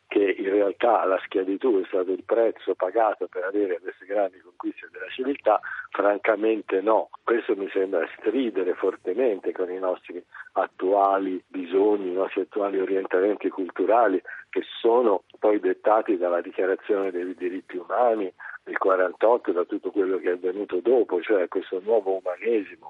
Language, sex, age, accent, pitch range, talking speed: Italian, male, 50-69, native, 320-425 Hz, 150 wpm